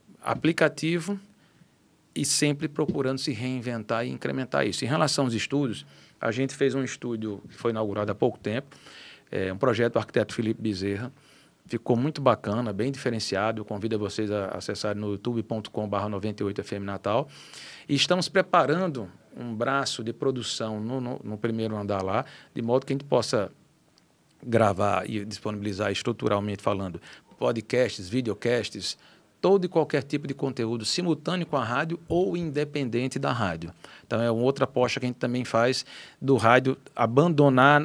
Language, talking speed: Portuguese, 155 wpm